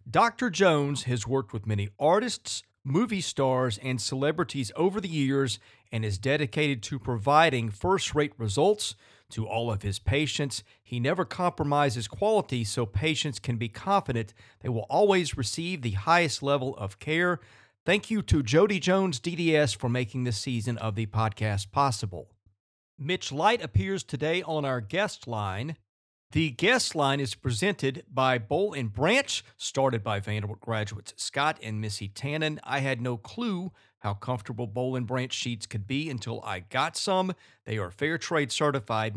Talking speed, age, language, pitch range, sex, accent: 155 wpm, 40-59, English, 110-155 Hz, male, American